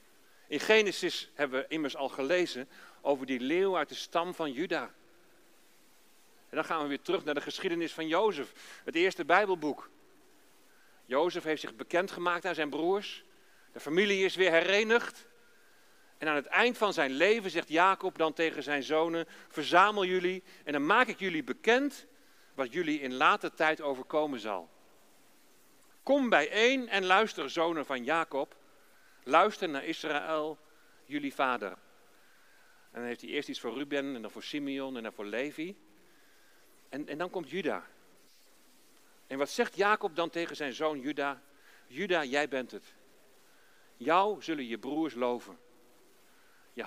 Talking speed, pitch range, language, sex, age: 155 wpm, 140-195 Hz, Dutch, male, 40-59